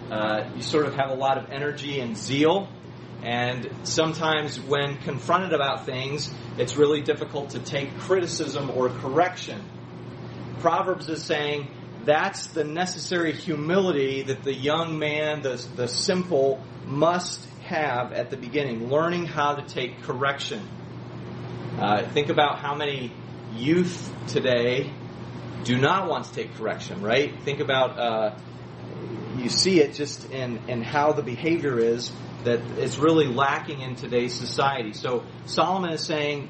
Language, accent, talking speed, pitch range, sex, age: English, American, 145 wpm, 125-160 Hz, male, 30-49